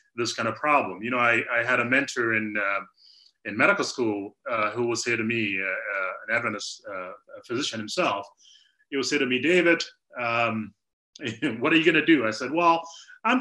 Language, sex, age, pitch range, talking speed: English, male, 30-49, 120-155 Hz, 205 wpm